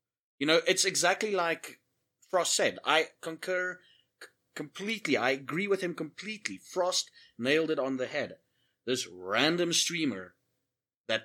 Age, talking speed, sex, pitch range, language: 30-49, 135 wpm, male, 125-160 Hz, English